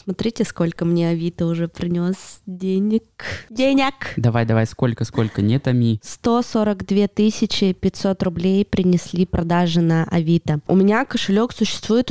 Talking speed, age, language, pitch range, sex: 125 wpm, 20-39, Russian, 170-205 Hz, female